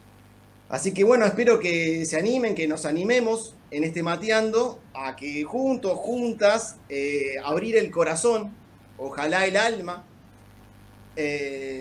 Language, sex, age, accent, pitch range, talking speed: Spanish, male, 30-49, Argentinian, 135-200 Hz, 125 wpm